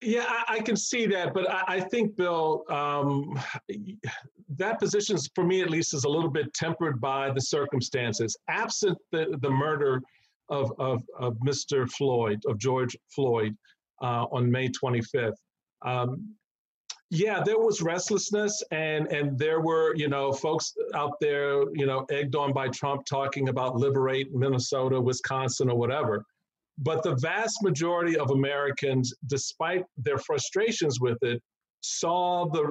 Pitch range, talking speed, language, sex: 130-175 Hz, 150 wpm, English, male